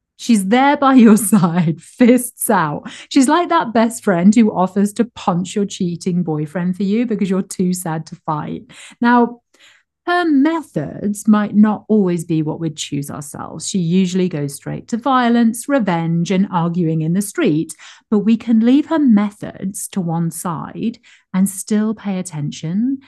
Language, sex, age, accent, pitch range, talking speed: English, female, 40-59, British, 150-205 Hz, 165 wpm